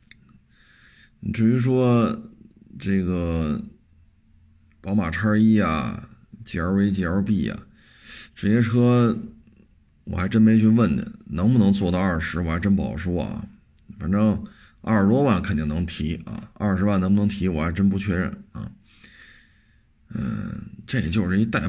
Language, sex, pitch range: Chinese, male, 95-110 Hz